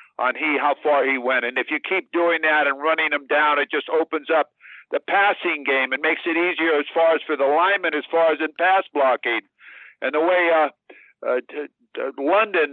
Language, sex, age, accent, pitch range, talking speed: English, male, 60-79, American, 145-185 Hz, 210 wpm